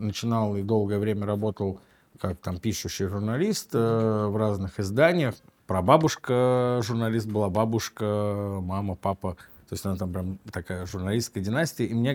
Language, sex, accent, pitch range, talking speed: Russian, male, native, 95-110 Hz, 145 wpm